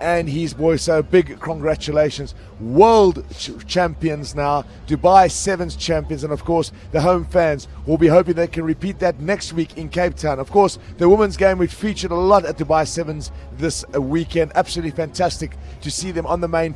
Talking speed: 185 wpm